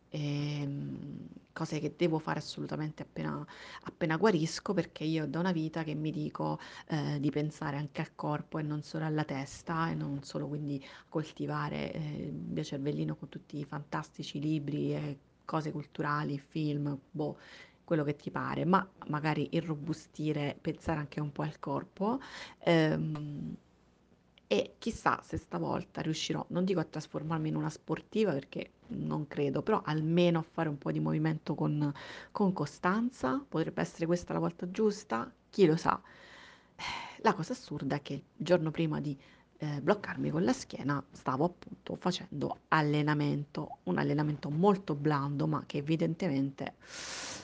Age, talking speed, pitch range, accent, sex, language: 30-49, 155 wpm, 145-165 Hz, native, female, Italian